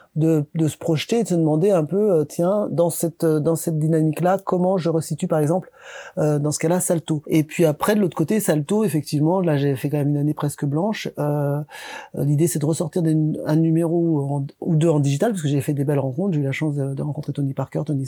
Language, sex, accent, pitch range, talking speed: French, male, French, 140-160 Hz, 240 wpm